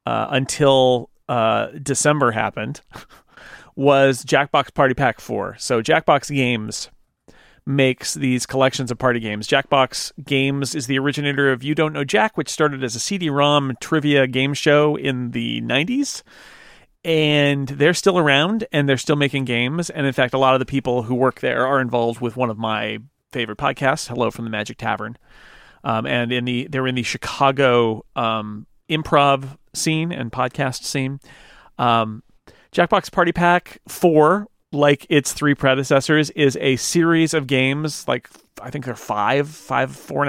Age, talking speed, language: 40-59, 165 wpm, English